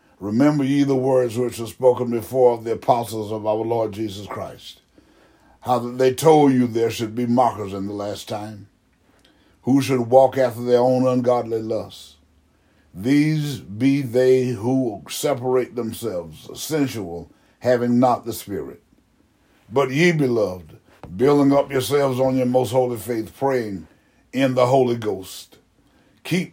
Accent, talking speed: American, 145 wpm